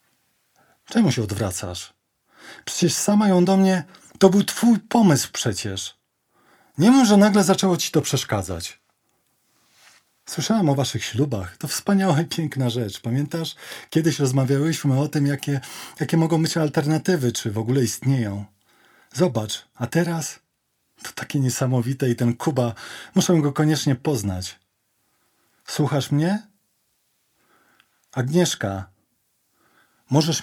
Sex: male